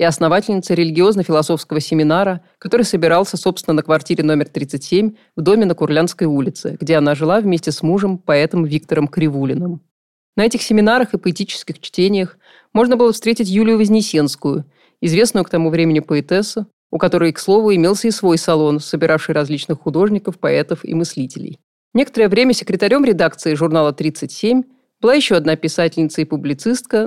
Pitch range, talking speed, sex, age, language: 155-200 Hz, 150 wpm, female, 30-49, Russian